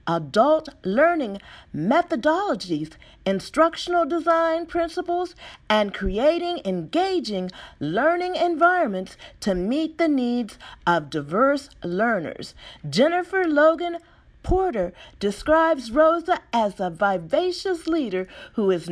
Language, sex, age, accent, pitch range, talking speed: English, female, 40-59, American, 225-330 Hz, 90 wpm